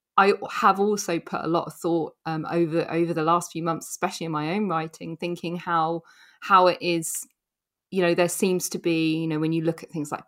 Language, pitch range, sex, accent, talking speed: English, 160-185 Hz, female, British, 230 wpm